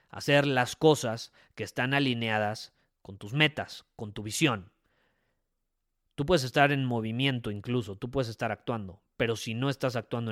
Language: Spanish